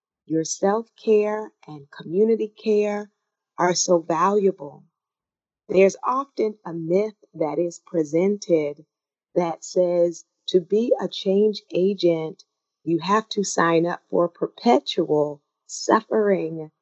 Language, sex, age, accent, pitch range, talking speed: English, female, 40-59, American, 165-210 Hz, 105 wpm